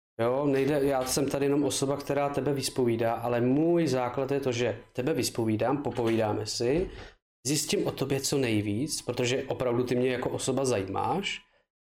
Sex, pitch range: male, 115-140 Hz